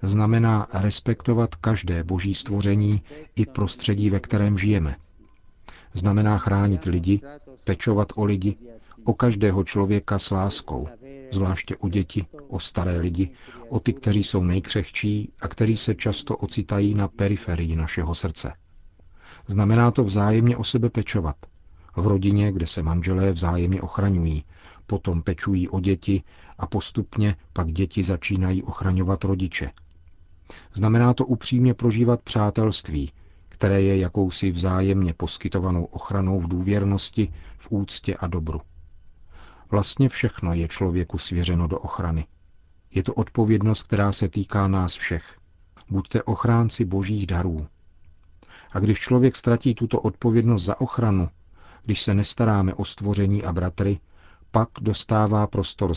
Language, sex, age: Czech, male, 50-69